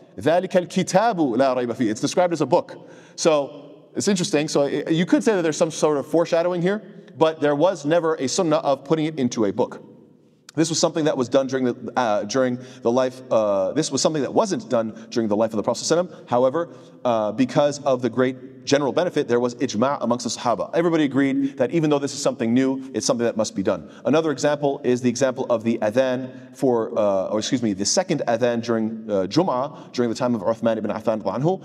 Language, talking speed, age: English, 210 wpm, 30-49